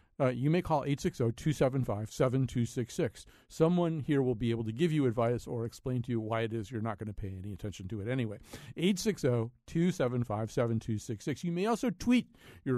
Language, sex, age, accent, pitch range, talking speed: English, male, 50-69, American, 110-145 Hz, 175 wpm